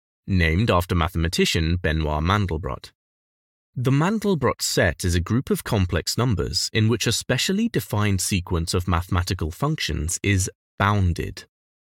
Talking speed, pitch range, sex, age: 125 wpm, 80-110 Hz, male, 30-49